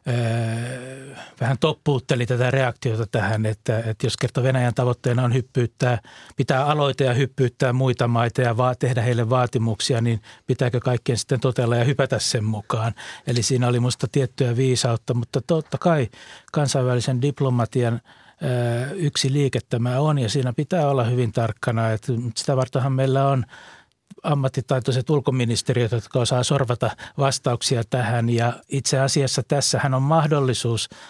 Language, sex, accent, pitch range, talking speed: Finnish, male, native, 120-135 Hz, 140 wpm